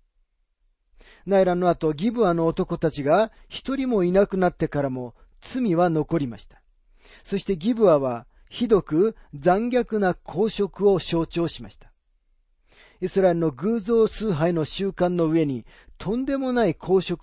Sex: male